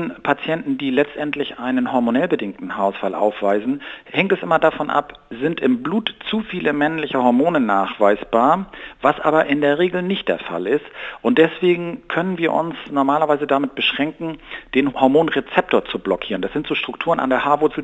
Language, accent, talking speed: German, German, 165 wpm